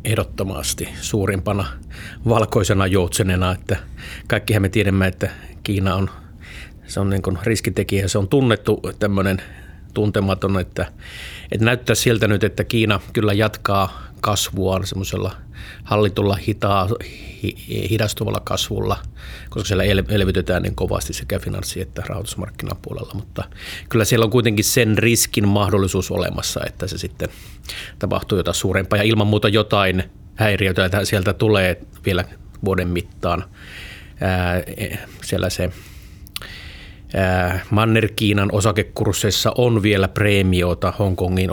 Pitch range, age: 95-105 Hz, 30-49